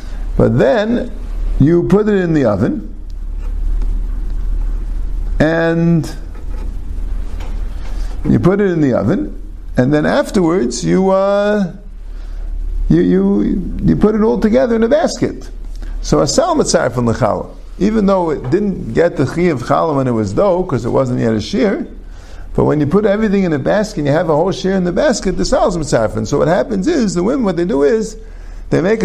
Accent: American